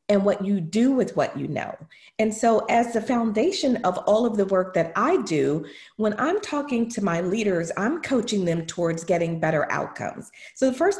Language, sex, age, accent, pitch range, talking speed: English, female, 40-59, American, 165-240 Hz, 200 wpm